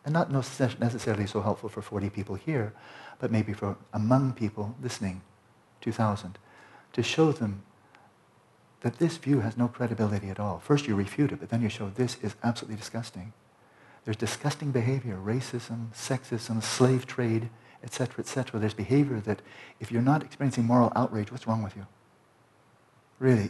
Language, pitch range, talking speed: English, 110-130 Hz, 160 wpm